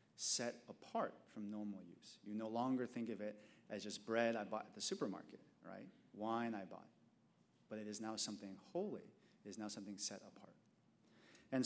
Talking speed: 185 wpm